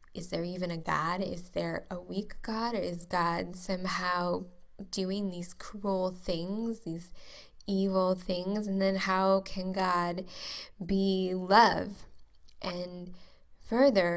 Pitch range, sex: 180-210 Hz, female